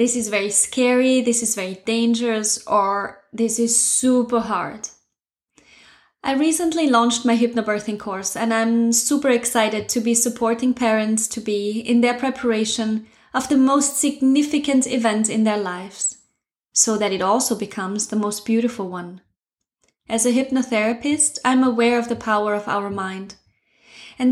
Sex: female